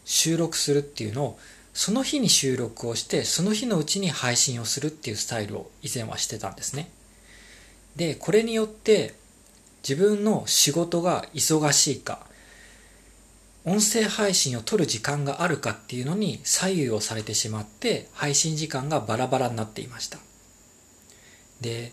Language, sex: Japanese, male